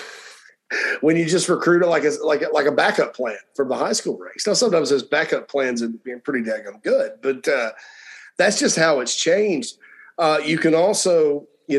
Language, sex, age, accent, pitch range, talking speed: English, male, 40-59, American, 135-175 Hz, 200 wpm